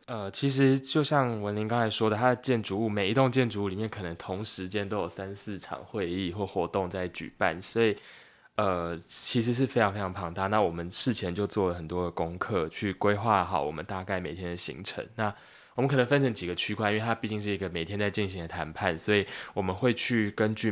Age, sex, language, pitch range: 20-39, male, Chinese, 90-110 Hz